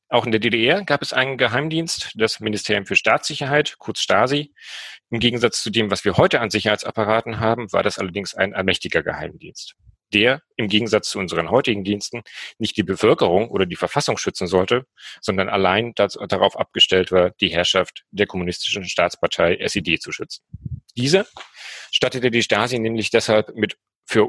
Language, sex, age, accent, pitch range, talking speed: German, male, 40-59, German, 100-120 Hz, 165 wpm